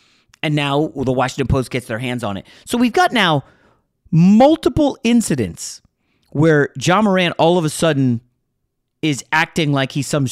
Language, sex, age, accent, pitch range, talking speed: English, male, 30-49, American, 125-165 Hz, 165 wpm